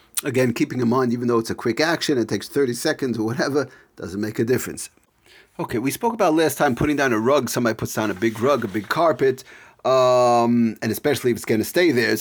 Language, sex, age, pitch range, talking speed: English, male, 40-59, 115-140 Hz, 230 wpm